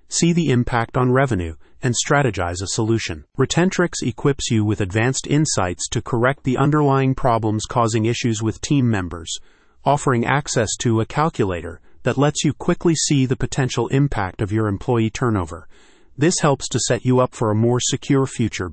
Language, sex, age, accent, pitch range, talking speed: English, male, 30-49, American, 110-135 Hz, 170 wpm